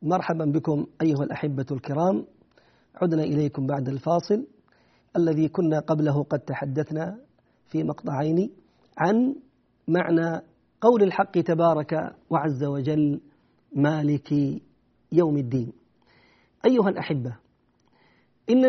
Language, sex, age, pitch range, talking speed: Arabic, male, 50-69, 160-230 Hz, 95 wpm